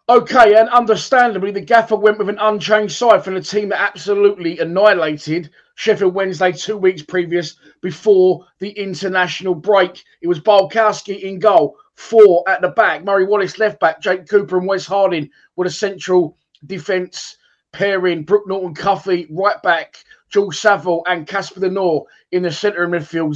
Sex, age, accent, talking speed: male, 20-39, British, 160 wpm